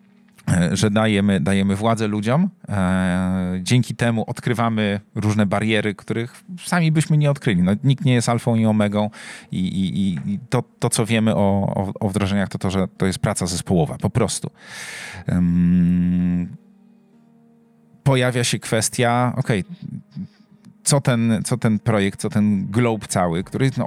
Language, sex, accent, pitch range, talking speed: Polish, male, native, 100-135 Hz, 140 wpm